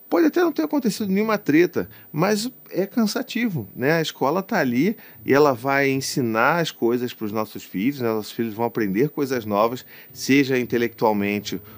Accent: Brazilian